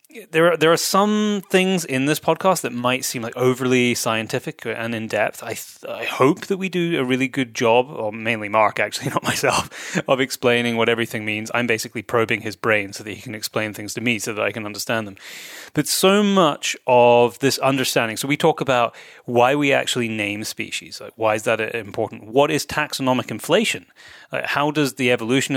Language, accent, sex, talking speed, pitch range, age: English, British, male, 205 wpm, 115-140 Hz, 30-49